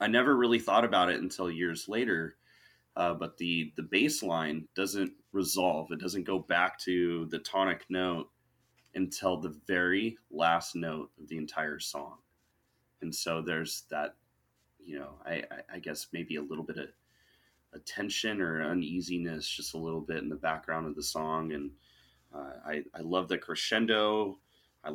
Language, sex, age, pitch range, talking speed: English, male, 30-49, 80-95 Hz, 165 wpm